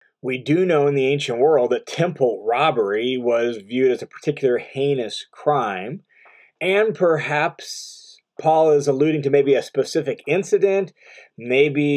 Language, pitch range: English, 135-185 Hz